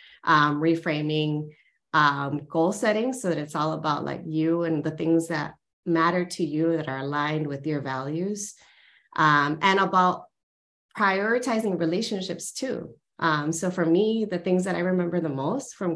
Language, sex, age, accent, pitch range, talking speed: English, female, 30-49, American, 165-210 Hz, 160 wpm